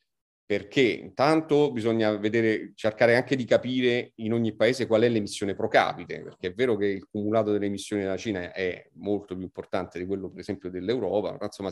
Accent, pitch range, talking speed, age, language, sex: native, 100-120 Hz, 180 wpm, 40-59, Italian, male